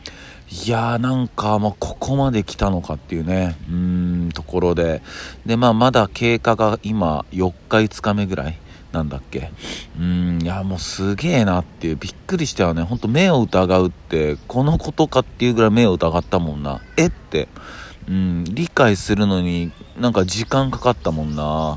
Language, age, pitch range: Japanese, 40-59, 80-110 Hz